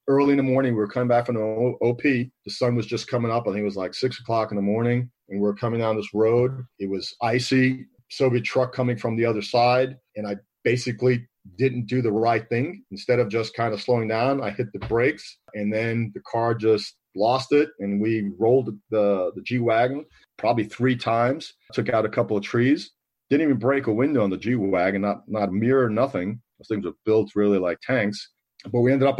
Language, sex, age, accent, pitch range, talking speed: English, male, 40-59, American, 105-125 Hz, 225 wpm